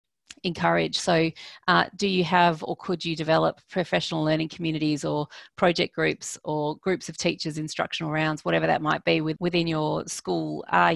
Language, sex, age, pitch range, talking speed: English, female, 40-59, 155-170 Hz, 165 wpm